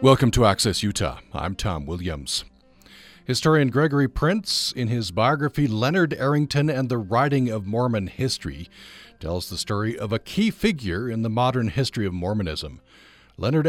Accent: American